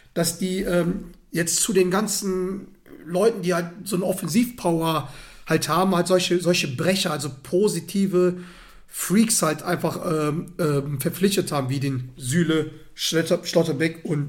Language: German